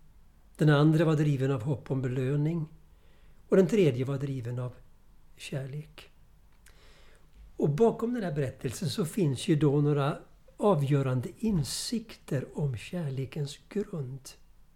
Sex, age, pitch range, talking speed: male, 60-79, 130-175 Hz, 120 wpm